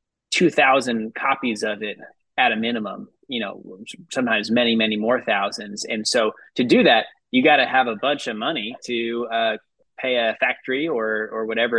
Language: English